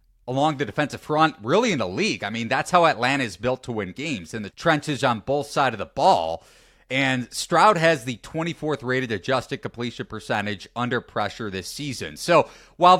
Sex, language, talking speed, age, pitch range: male, English, 195 wpm, 30-49, 110-155 Hz